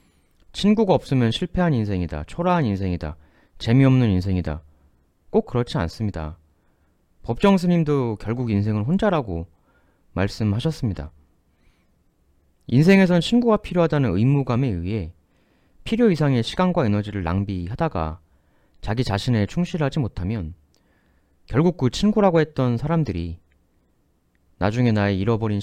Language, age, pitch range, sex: Korean, 30-49, 80-130 Hz, male